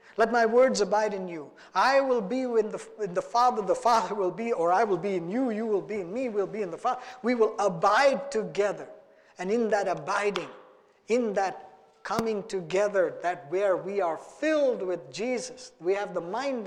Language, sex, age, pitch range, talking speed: English, male, 50-69, 185-245 Hz, 210 wpm